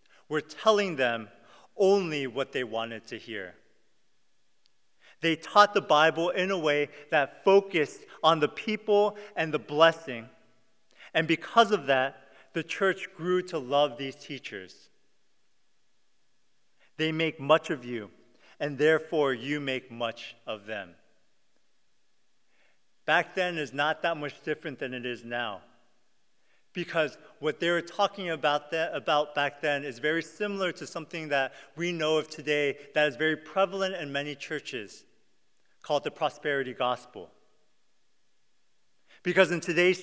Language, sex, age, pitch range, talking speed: English, male, 40-59, 145-180 Hz, 140 wpm